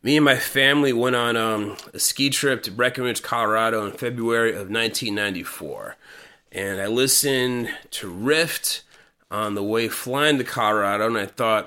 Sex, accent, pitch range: male, American, 110-140 Hz